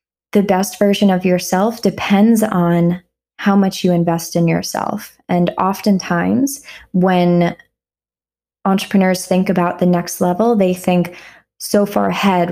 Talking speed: 130 wpm